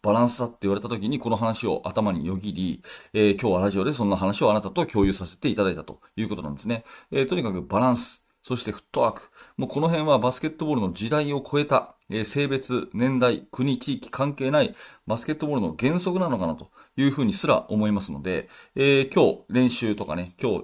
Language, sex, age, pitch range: Japanese, male, 30-49, 105-140 Hz